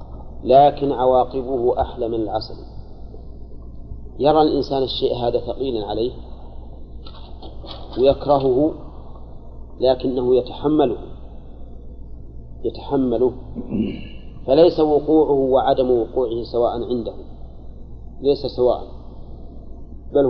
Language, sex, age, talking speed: Arabic, male, 40-59, 70 wpm